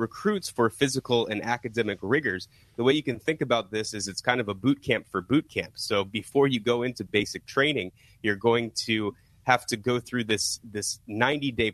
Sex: male